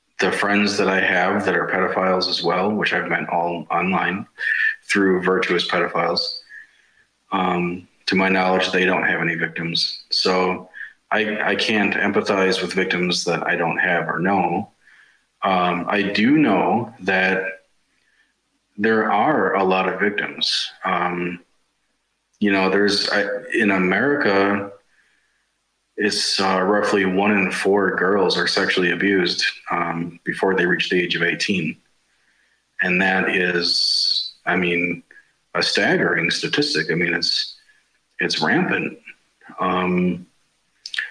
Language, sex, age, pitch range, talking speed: Danish, male, 30-49, 90-105 Hz, 130 wpm